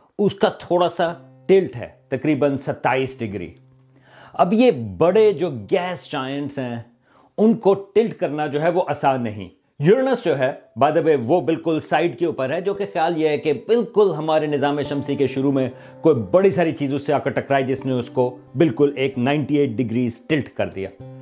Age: 40-59